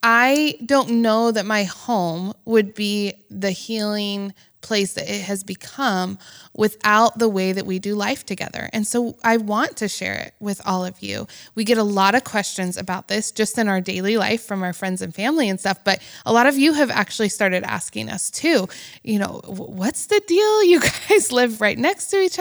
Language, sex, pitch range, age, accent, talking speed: English, female, 200-260 Hz, 20-39, American, 205 wpm